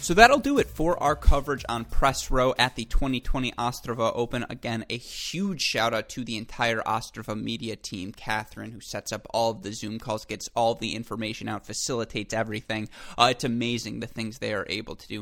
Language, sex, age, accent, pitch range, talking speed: English, male, 20-39, American, 105-120 Hz, 200 wpm